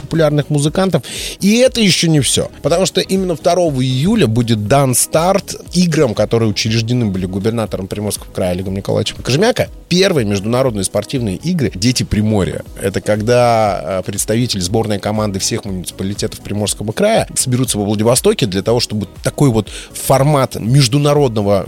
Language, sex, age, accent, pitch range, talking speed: Russian, male, 30-49, native, 105-145 Hz, 140 wpm